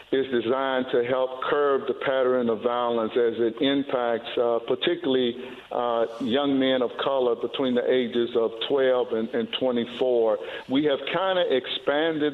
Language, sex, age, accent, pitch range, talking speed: English, male, 50-69, American, 115-140 Hz, 155 wpm